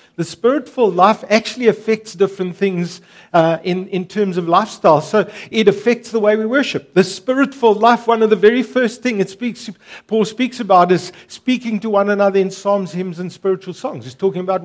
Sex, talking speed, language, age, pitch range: male, 195 wpm, English, 50-69, 185-225 Hz